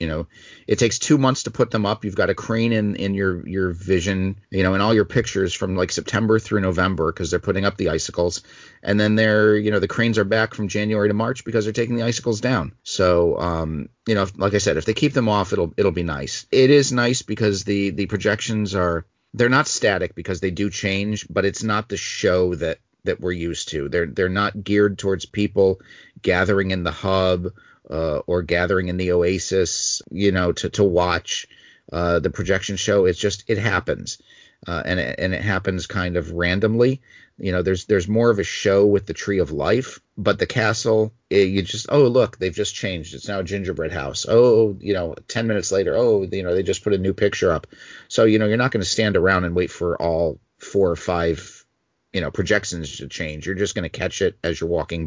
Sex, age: male, 40-59